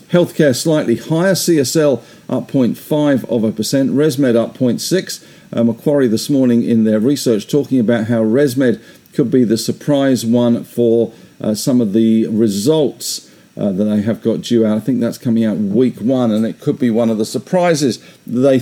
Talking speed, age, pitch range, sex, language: 185 wpm, 50-69, 115-140 Hz, male, English